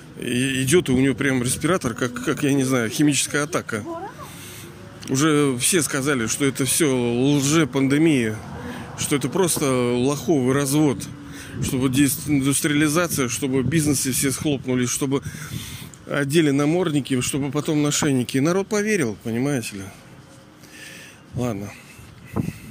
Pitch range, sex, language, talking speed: 125-150 Hz, male, Russian, 115 wpm